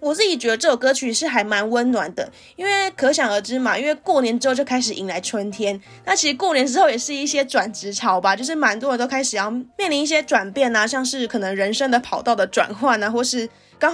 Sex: female